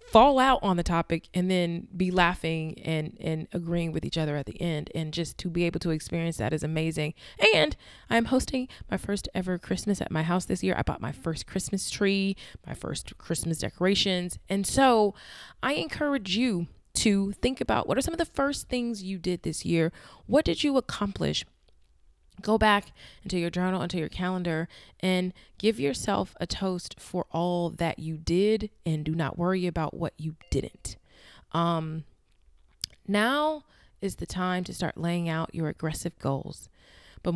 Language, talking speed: English, 180 wpm